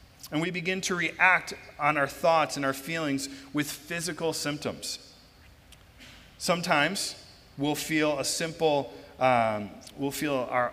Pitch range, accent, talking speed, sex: 120-150 Hz, American, 130 wpm, male